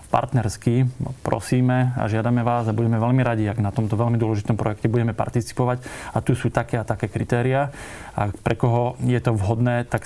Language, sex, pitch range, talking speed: Slovak, male, 115-125 Hz, 185 wpm